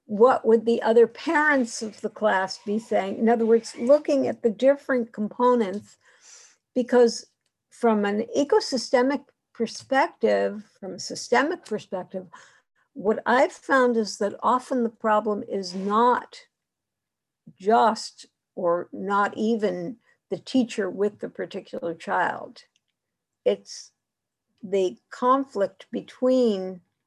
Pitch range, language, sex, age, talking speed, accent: 205-255 Hz, English, female, 60-79, 115 wpm, American